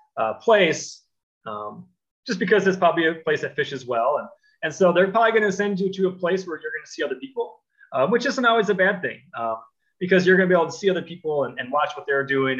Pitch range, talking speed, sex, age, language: 130-195 Hz, 260 wpm, male, 30-49, English